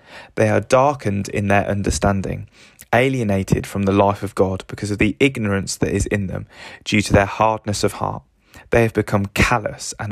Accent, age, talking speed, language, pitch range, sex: British, 20-39, 185 wpm, English, 100-120 Hz, male